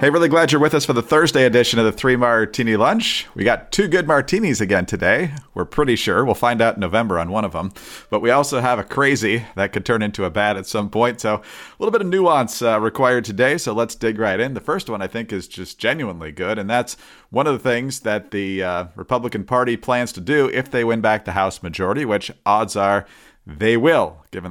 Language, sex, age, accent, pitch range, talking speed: English, male, 40-59, American, 105-130 Hz, 240 wpm